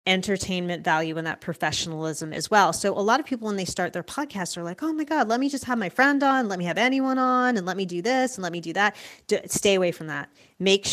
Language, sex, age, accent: English, female, 30-49, American